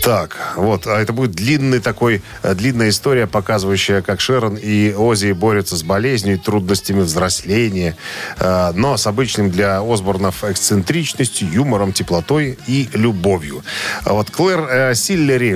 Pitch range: 100-130 Hz